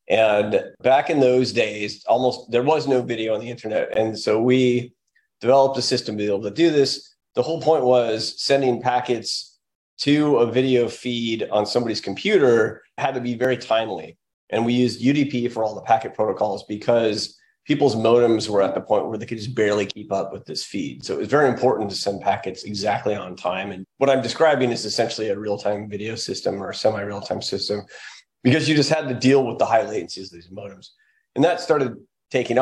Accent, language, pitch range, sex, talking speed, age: American, English, 105-135 Hz, male, 200 wpm, 30-49